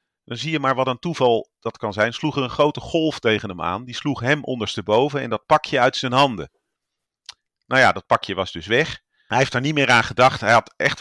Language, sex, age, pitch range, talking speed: Dutch, male, 40-59, 95-120 Hz, 245 wpm